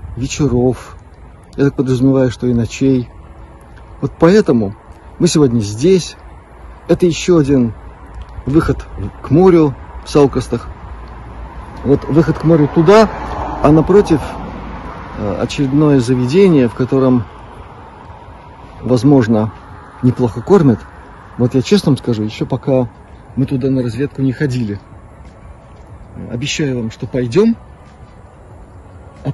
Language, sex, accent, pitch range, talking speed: Russian, male, native, 100-140 Hz, 105 wpm